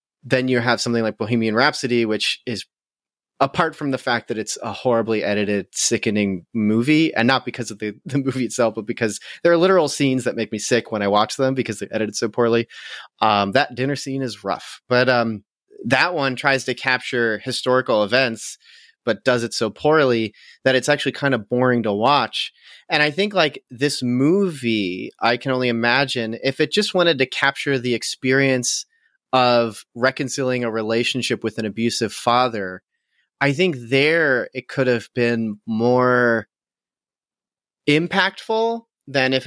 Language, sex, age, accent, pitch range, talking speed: English, male, 30-49, American, 115-140 Hz, 170 wpm